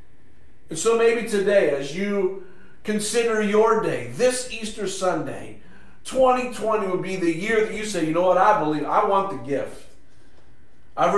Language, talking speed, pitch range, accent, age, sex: English, 160 wpm, 170-210 Hz, American, 50-69, male